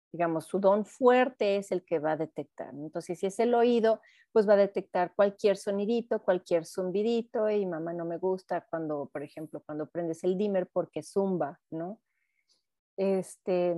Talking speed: 170 wpm